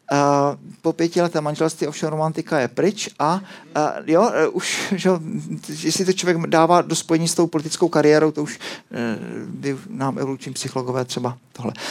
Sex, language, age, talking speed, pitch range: male, Czech, 40-59, 170 wpm, 145-190 Hz